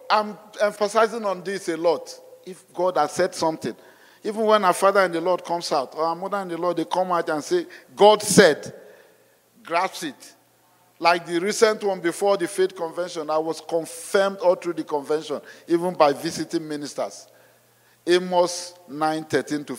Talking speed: 175 wpm